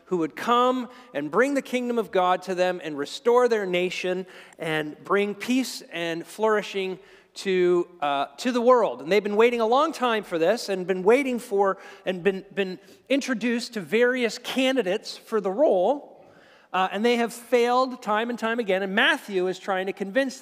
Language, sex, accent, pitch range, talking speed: English, male, American, 170-240 Hz, 185 wpm